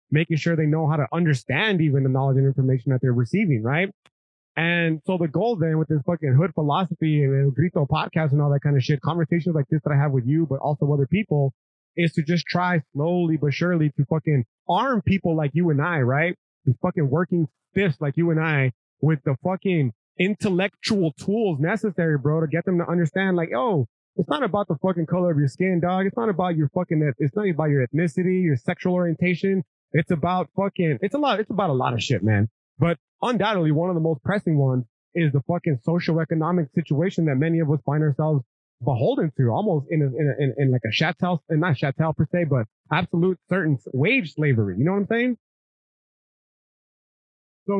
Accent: American